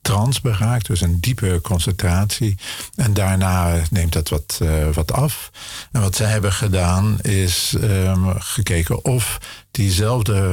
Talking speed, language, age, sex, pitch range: 130 wpm, Dutch, 50-69, male, 90-110 Hz